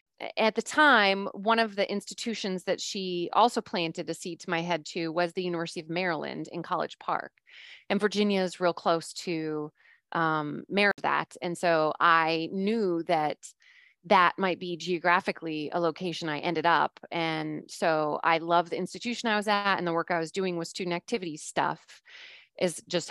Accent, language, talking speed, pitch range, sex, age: American, English, 180 wpm, 165-195 Hz, female, 30-49